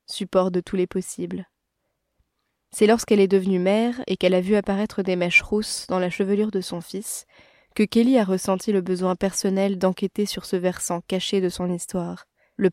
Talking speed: 190 wpm